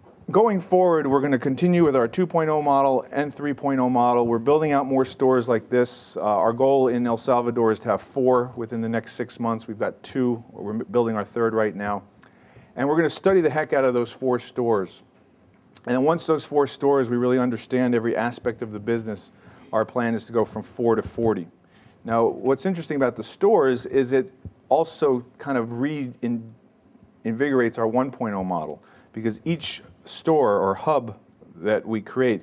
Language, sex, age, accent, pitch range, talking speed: English, male, 40-59, American, 105-130 Hz, 190 wpm